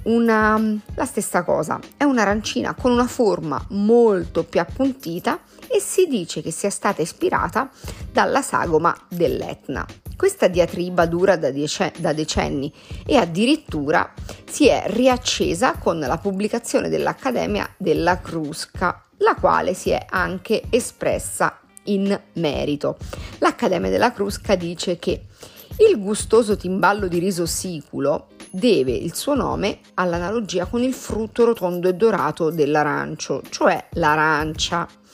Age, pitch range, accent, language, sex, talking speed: 40-59, 175-240 Hz, native, Italian, female, 125 wpm